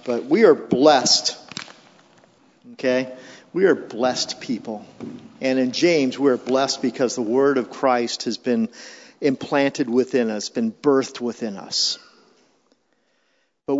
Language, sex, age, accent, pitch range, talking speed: English, male, 50-69, American, 125-155 Hz, 130 wpm